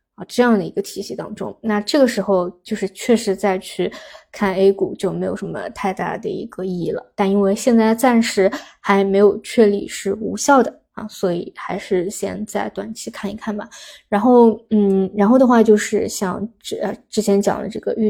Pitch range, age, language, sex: 200-225 Hz, 20-39, Chinese, female